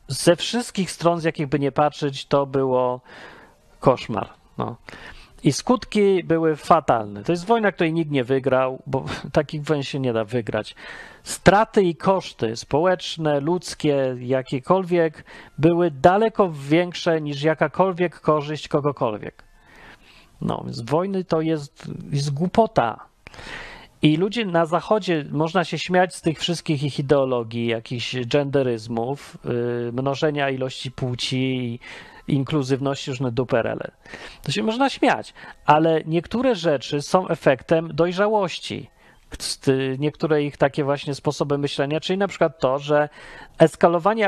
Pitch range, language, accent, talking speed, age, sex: 135-175 Hz, Polish, native, 125 wpm, 40-59, male